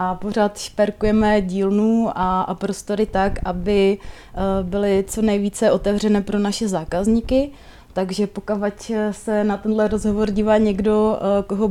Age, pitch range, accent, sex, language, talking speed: 30-49, 195-210 Hz, native, female, Czech, 125 wpm